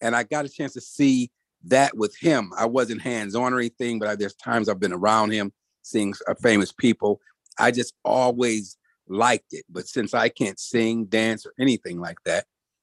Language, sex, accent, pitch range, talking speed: English, male, American, 105-130 Hz, 190 wpm